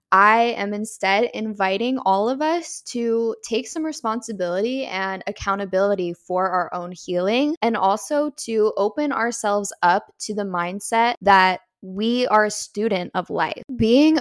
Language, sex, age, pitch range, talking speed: English, female, 10-29, 190-230 Hz, 145 wpm